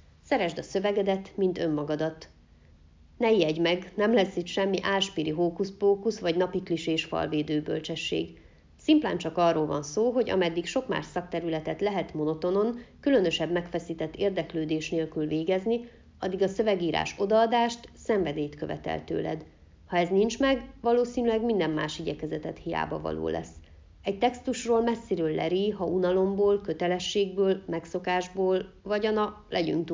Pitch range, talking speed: 155-205 Hz, 130 wpm